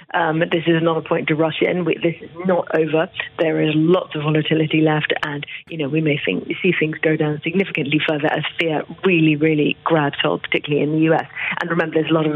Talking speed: 235 wpm